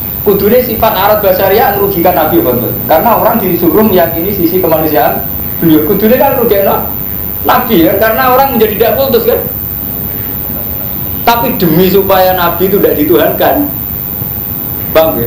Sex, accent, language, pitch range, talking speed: male, native, Indonesian, 115-190 Hz, 135 wpm